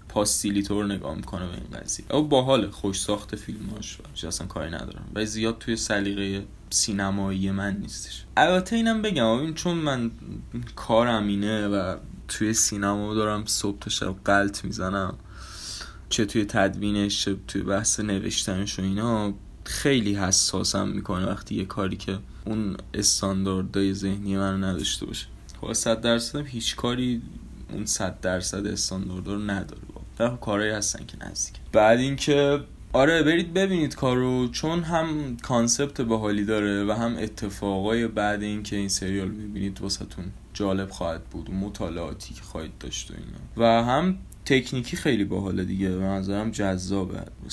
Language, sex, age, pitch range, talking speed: Persian, male, 20-39, 95-115 Hz, 155 wpm